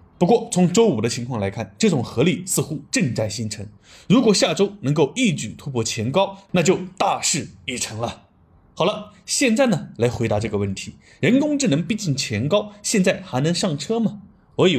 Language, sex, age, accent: Chinese, male, 20-39, native